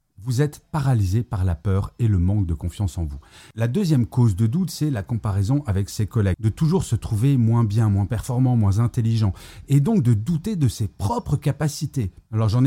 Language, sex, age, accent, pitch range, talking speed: French, male, 30-49, French, 95-125 Hz, 210 wpm